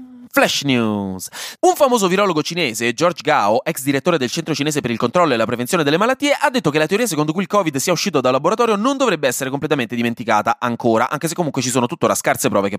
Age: 20-39